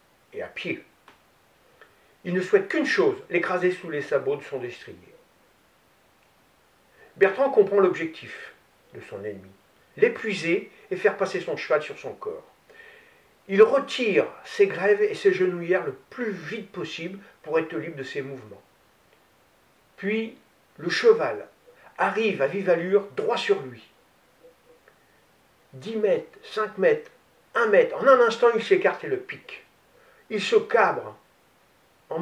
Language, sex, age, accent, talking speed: French, male, 50-69, French, 140 wpm